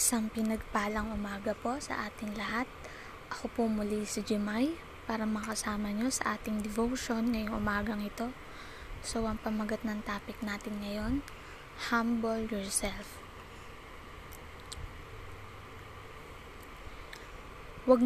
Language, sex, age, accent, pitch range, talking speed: Filipino, female, 20-39, native, 200-230 Hz, 105 wpm